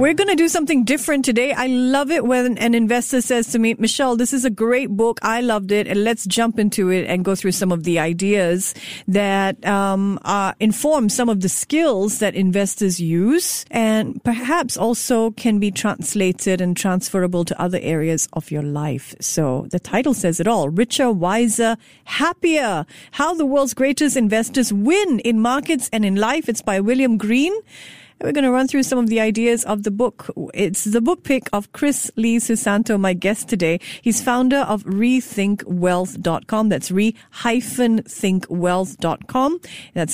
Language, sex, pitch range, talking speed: English, female, 190-255 Hz, 175 wpm